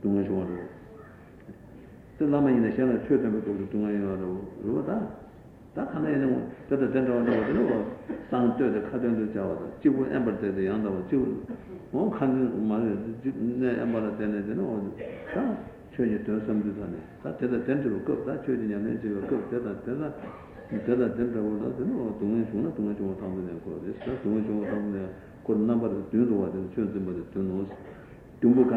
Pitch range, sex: 100-120 Hz, male